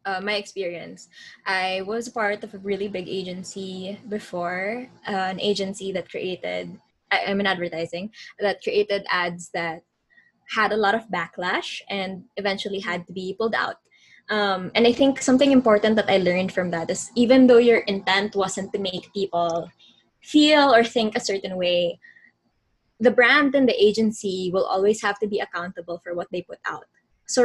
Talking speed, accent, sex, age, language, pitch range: 175 wpm, Filipino, female, 20-39, English, 185-230 Hz